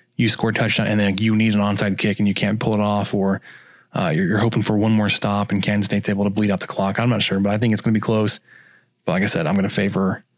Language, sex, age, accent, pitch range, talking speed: English, male, 20-39, American, 105-125 Hz, 305 wpm